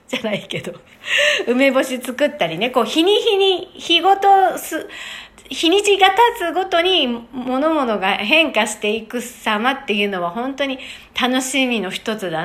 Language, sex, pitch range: Japanese, female, 205-295 Hz